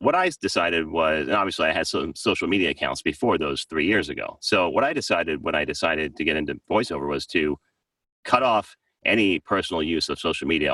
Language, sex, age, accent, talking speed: English, male, 30-49, American, 210 wpm